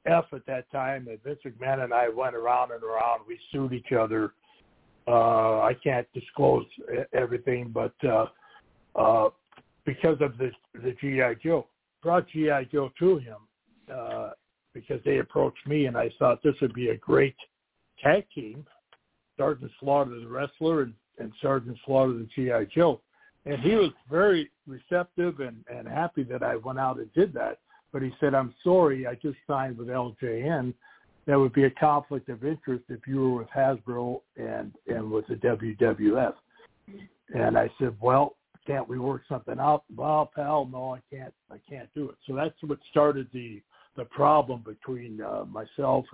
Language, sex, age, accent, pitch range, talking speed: English, male, 60-79, American, 125-145 Hz, 170 wpm